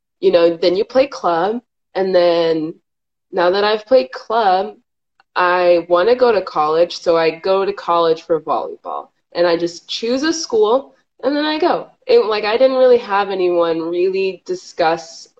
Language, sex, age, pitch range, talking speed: English, female, 20-39, 160-265 Hz, 170 wpm